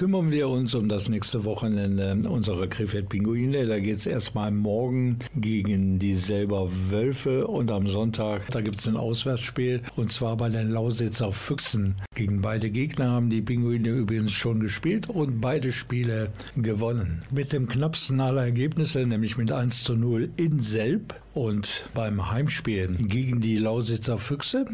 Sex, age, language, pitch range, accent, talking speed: male, 60-79, German, 105-125 Hz, German, 155 wpm